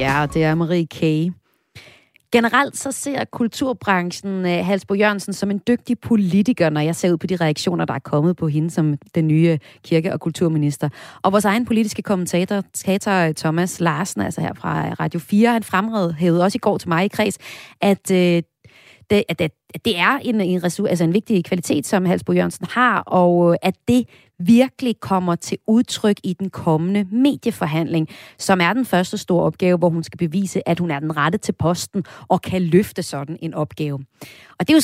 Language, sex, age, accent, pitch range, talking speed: Danish, female, 30-49, native, 170-235 Hz, 190 wpm